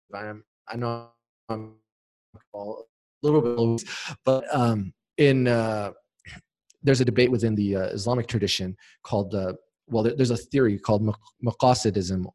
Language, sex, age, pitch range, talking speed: English, male, 30-49, 105-130 Hz, 145 wpm